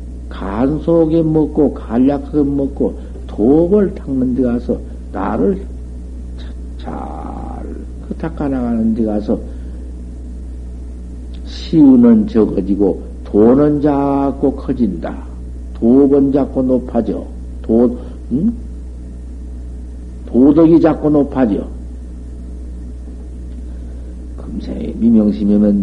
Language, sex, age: Korean, male, 50-69